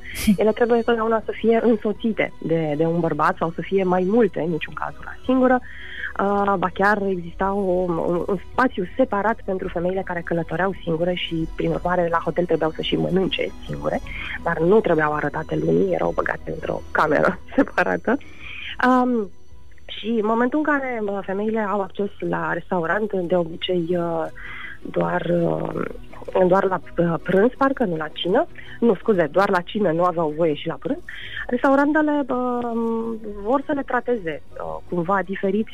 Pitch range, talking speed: 175-230 Hz, 160 wpm